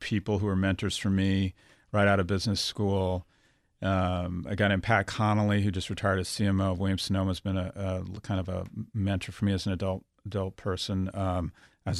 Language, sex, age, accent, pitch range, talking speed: English, male, 40-59, American, 95-115 Hz, 205 wpm